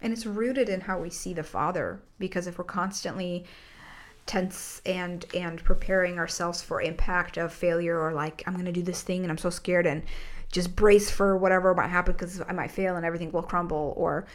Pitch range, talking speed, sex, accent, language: 160-185 Hz, 210 wpm, female, American, English